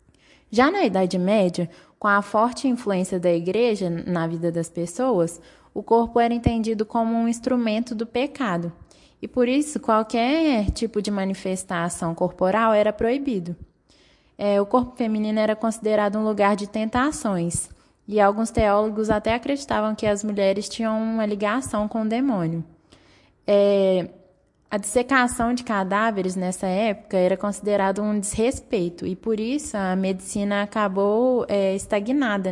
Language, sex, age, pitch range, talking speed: Portuguese, female, 20-39, 190-230 Hz, 140 wpm